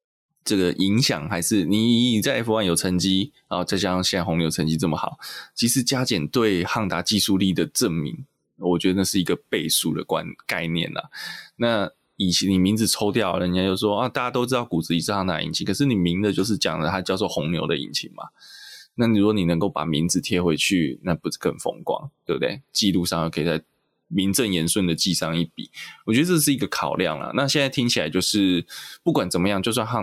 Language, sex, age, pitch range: Chinese, male, 20-39, 85-110 Hz